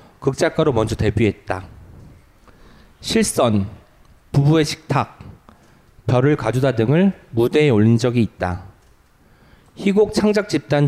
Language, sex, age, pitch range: Korean, male, 40-59, 115-160 Hz